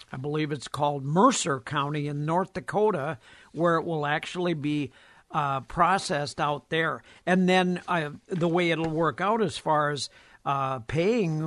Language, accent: English, American